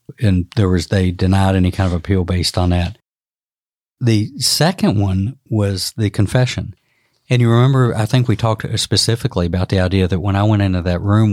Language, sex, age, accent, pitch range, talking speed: English, male, 60-79, American, 90-110 Hz, 190 wpm